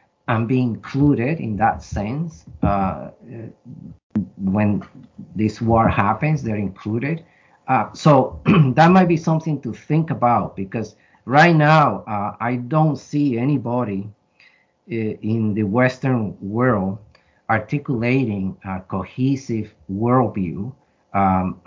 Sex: male